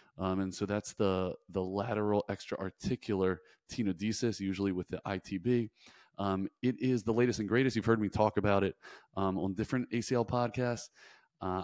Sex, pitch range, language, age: male, 100-120 Hz, English, 30-49